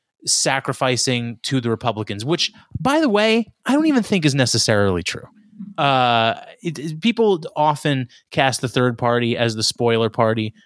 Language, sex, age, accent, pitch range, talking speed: English, male, 20-39, American, 120-165 Hz, 160 wpm